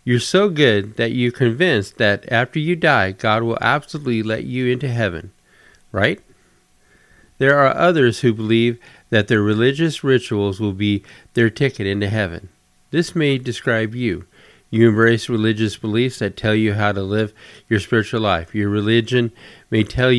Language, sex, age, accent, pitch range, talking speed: English, male, 50-69, American, 100-125 Hz, 160 wpm